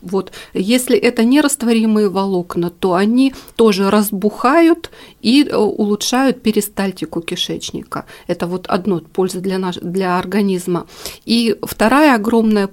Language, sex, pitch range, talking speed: Russian, female, 190-230 Hz, 105 wpm